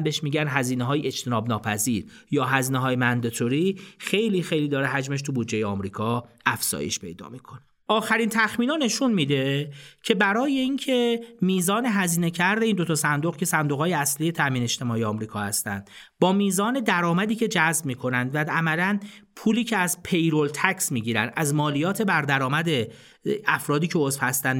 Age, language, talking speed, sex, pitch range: 40-59, Persian, 155 wpm, male, 130-200 Hz